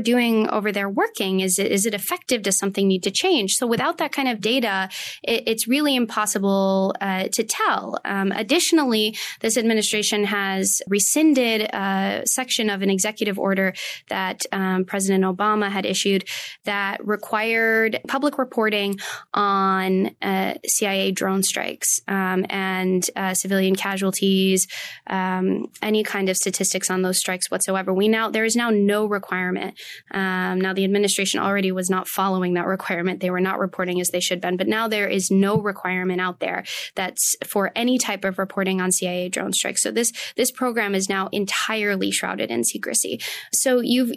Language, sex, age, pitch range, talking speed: English, female, 20-39, 190-220 Hz, 170 wpm